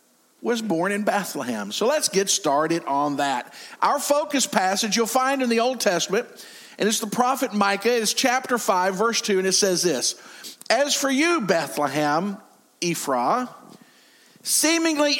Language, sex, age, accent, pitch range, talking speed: English, male, 50-69, American, 185-250 Hz, 155 wpm